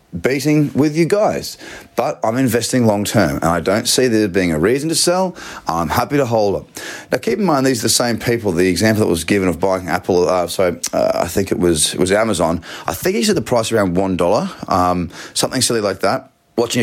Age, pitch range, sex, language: 30-49, 90-120 Hz, male, English